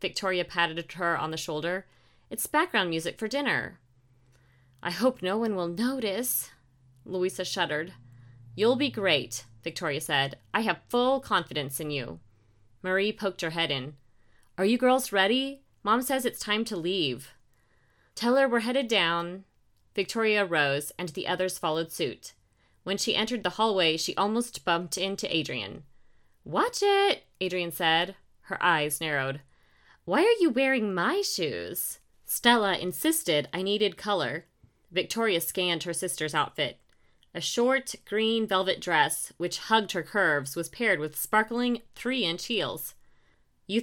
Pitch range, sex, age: 155-235 Hz, female, 30-49